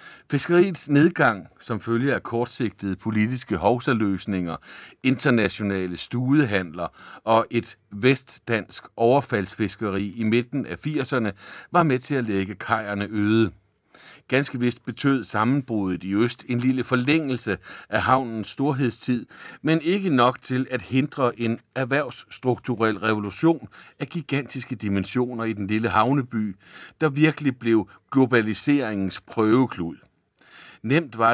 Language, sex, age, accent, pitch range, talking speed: Danish, male, 60-79, native, 105-135 Hz, 115 wpm